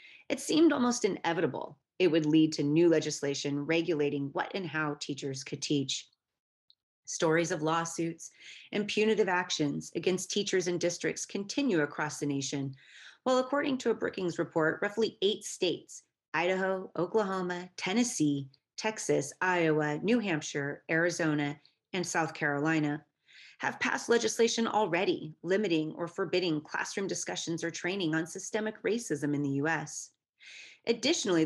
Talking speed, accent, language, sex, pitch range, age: 130 wpm, American, English, female, 155-210 Hz, 30-49